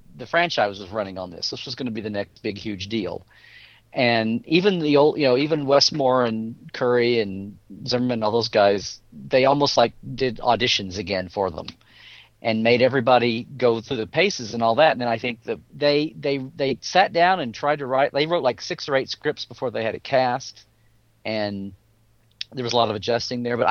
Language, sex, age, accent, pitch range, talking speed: English, male, 40-59, American, 115-140 Hz, 215 wpm